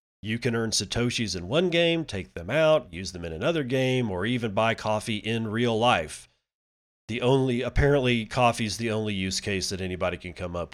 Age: 40-59